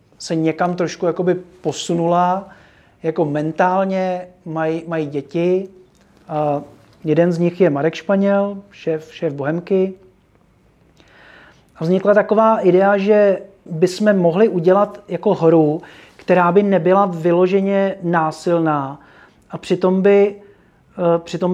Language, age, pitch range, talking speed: Czech, 40-59, 160-190 Hz, 110 wpm